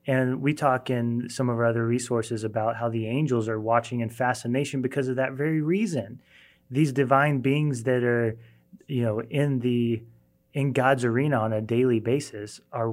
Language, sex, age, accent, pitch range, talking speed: English, male, 30-49, American, 115-140 Hz, 180 wpm